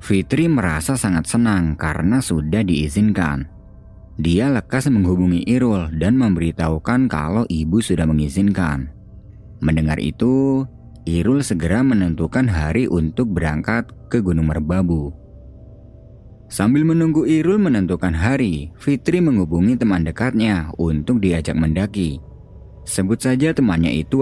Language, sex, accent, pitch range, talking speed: Indonesian, male, native, 80-115 Hz, 110 wpm